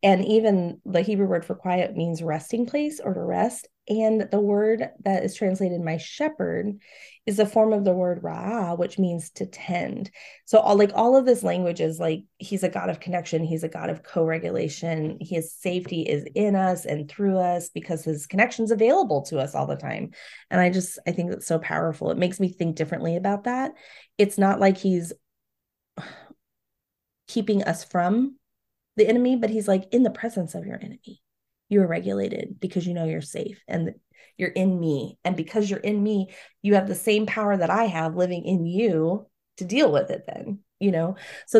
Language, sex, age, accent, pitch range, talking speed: English, female, 30-49, American, 165-210 Hz, 200 wpm